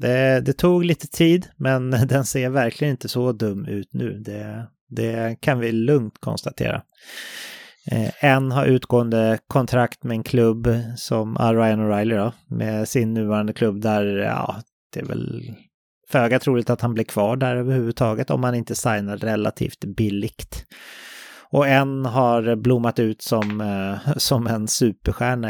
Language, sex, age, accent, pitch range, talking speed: English, male, 30-49, Swedish, 110-135 Hz, 150 wpm